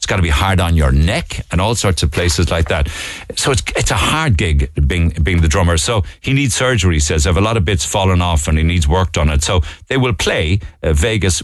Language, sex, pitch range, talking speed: English, male, 80-100 Hz, 255 wpm